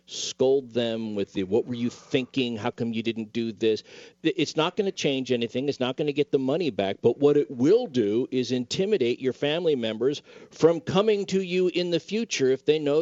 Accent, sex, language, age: American, male, English, 50-69